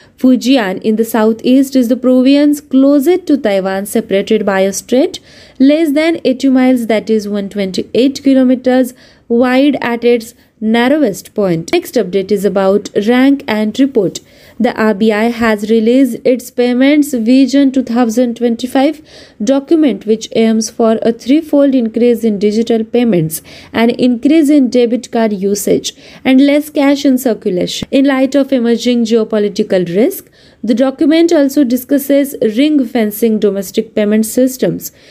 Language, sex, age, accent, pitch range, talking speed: Marathi, female, 20-39, native, 220-275 Hz, 135 wpm